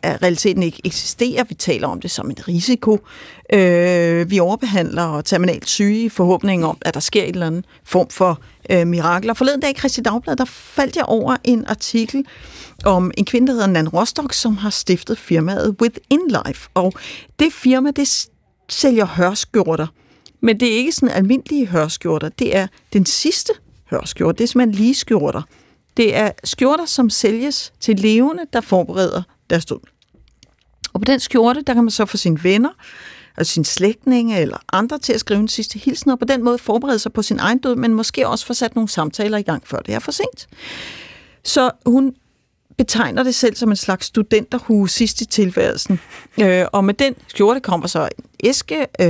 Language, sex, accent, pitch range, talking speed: Danish, female, native, 185-250 Hz, 185 wpm